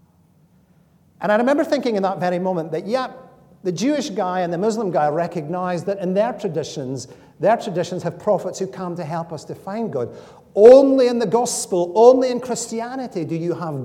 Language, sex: English, male